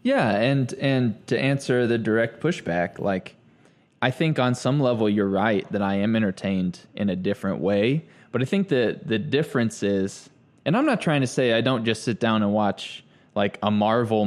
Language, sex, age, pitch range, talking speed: English, male, 20-39, 105-130 Hz, 200 wpm